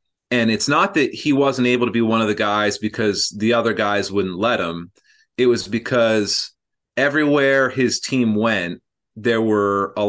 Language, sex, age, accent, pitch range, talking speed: English, male, 30-49, American, 95-115 Hz, 180 wpm